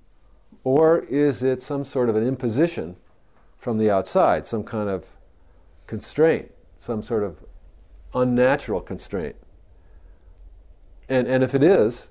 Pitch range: 90-115 Hz